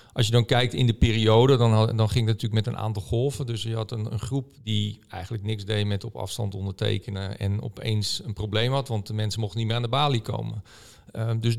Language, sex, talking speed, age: Dutch, male, 240 wpm, 50-69